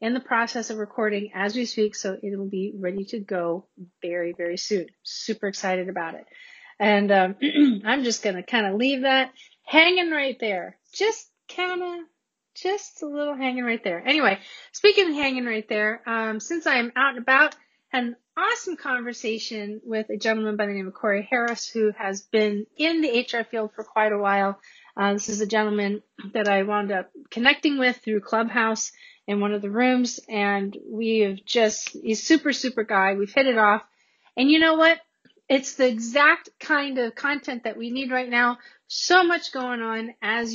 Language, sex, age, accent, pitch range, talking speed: English, female, 30-49, American, 210-280 Hz, 190 wpm